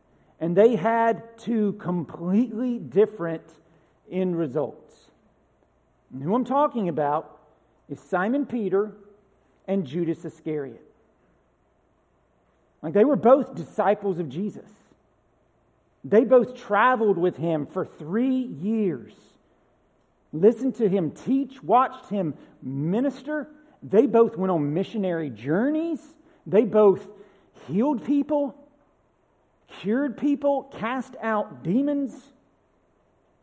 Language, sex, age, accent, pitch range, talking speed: English, male, 50-69, American, 180-260 Hz, 100 wpm